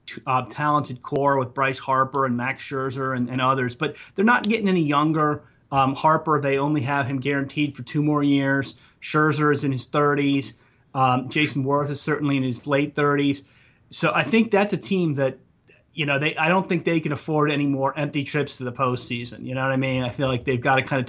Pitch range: 130-150 Hz